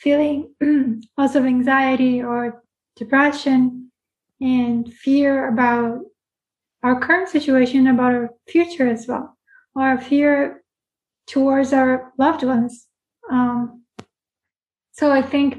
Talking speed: 105 wpm